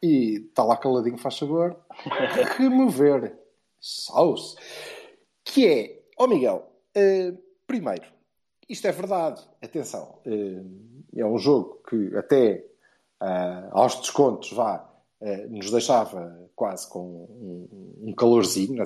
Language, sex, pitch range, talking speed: Portuguese, male, 120-190 Hz, 100 wpm